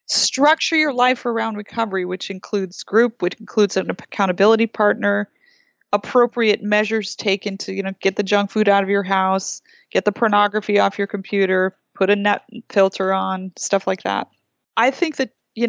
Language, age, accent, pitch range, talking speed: English, 20-39, American, 195-220 Hz, 170 wpm